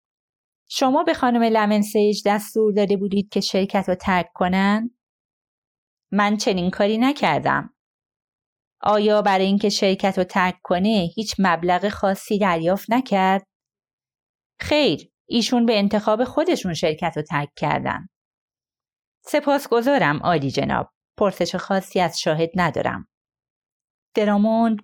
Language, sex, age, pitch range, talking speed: Persian, female, 30-49, 175-220 Hz, 115 wpm